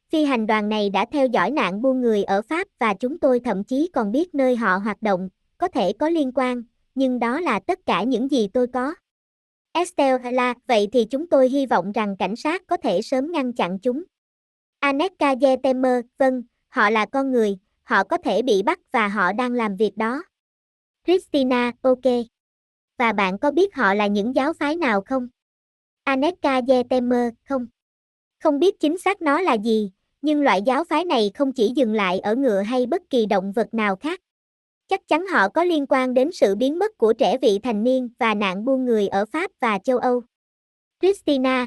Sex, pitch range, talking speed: male, 215-285 Hz, 195 wpm